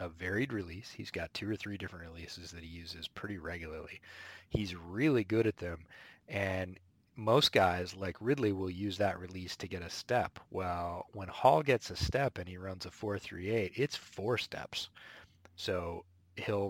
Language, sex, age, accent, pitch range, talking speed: English, male, 30-49, American, 85-105 Hz, 185 wpm